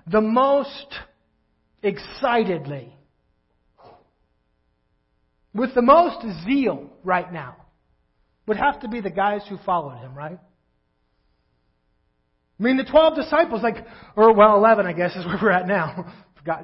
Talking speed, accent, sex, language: 130 wpm, American, male, English